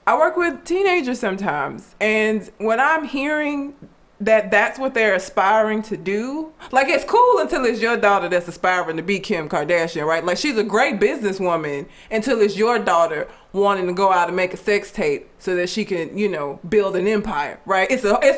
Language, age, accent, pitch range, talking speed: English, 20-39, American, 180-245 Hz, 195 wpm